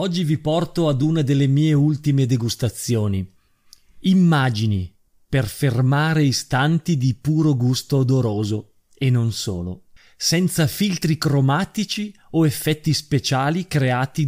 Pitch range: 115-150 Hz